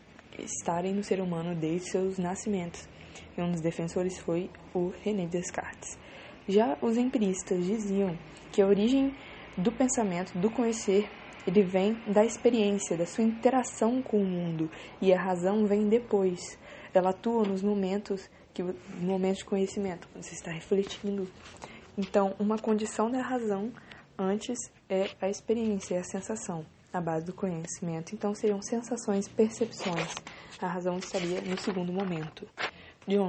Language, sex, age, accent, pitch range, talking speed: Portuguese, female, 20-39, Brazilian, 180-215 Hz, 145 wpm